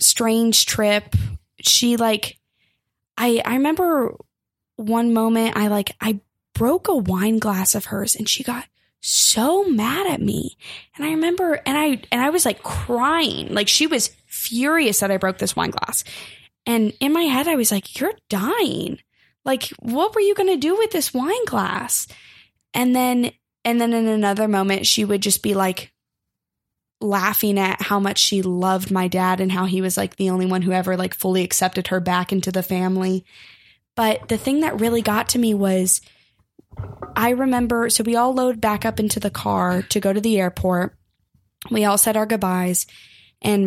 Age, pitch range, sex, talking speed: 10-29, 190-245 Hz, female, 185 wpm